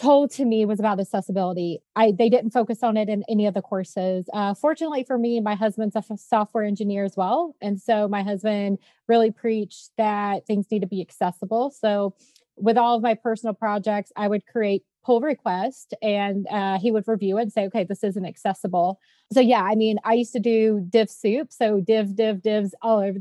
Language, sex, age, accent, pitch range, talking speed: English, female, 30-49, American, 200-235 Hz, 210 wpm